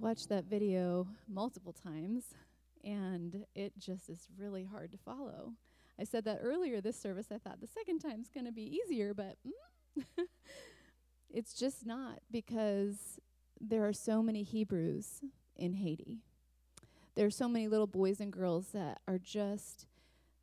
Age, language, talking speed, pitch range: 30-49, English, 155 wpm, 185-225 Hz